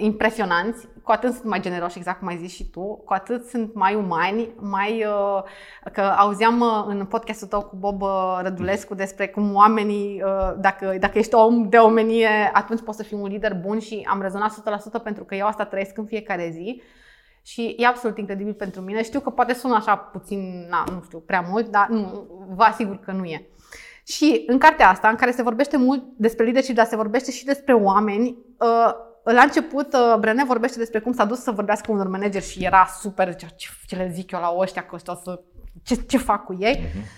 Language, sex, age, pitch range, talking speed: Romanian, female, 20-39, 195-235 Hz, 200 wpm